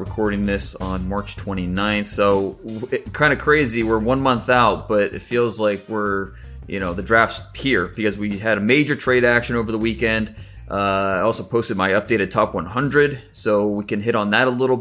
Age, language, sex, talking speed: 30-49, English, male, 195 wpm